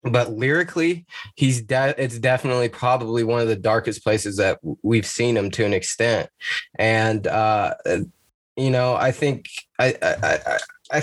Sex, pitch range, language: male, 115-150 Hz, English